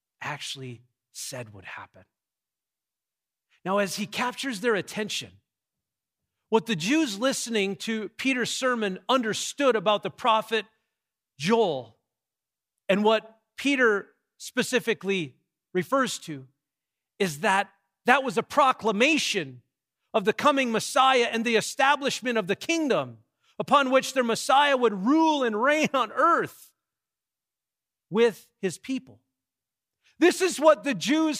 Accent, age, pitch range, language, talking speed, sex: American, 40-59, 205-270 Hz, English, 120 wpm, male